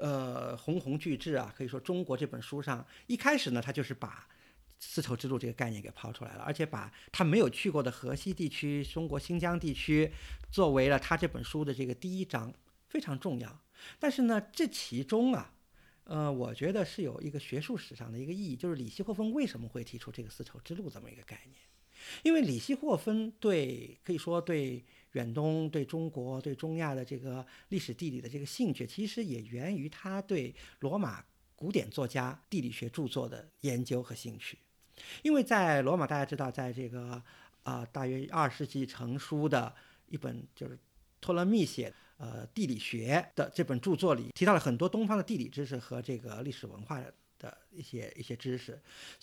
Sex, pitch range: male, 125-180 Hz